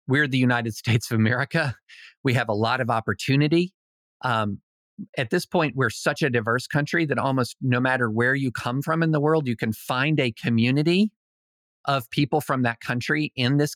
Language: English